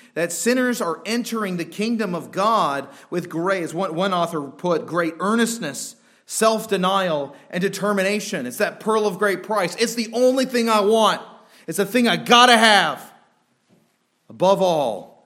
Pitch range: 120-200 Hz